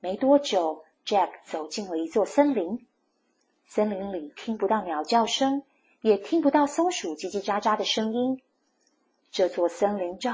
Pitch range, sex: 160-265 Hz, female